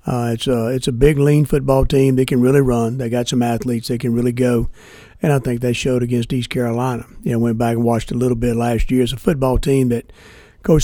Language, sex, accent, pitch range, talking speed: English, male, American, 120-145 Hz, 255 wpm